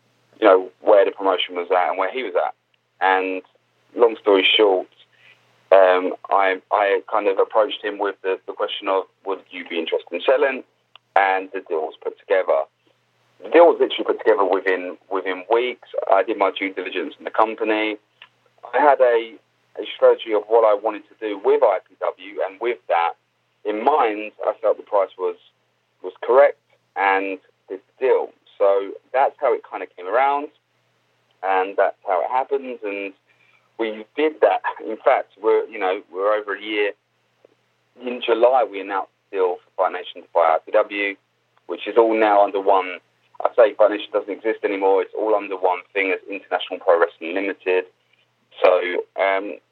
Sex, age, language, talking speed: male, 30-49, English, 180 wpm